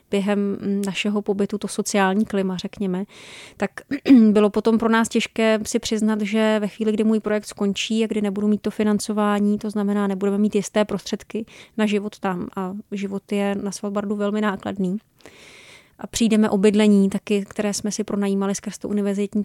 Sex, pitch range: female, 200-215 Hz